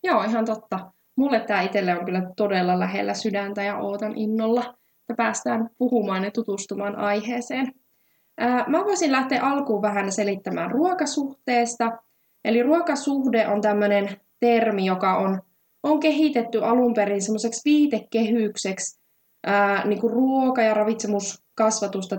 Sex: female